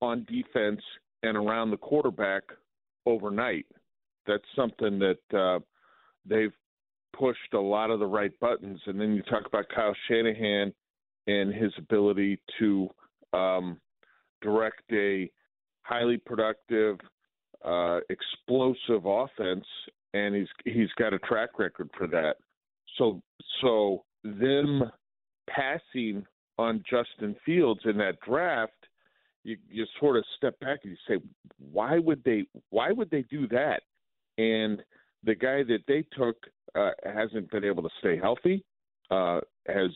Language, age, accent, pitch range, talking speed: English, 50-69, American, 100-120 Hz, 130 wpm